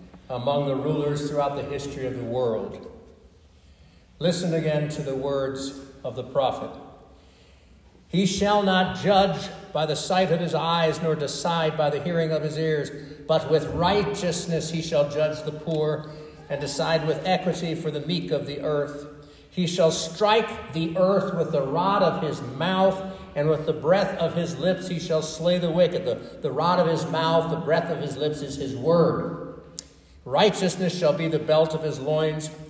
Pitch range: 135-170 Hz